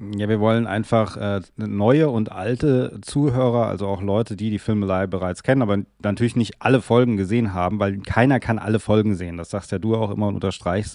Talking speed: 205 wpm